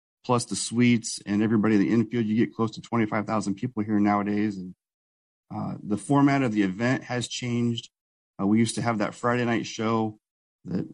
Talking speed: 190 wpm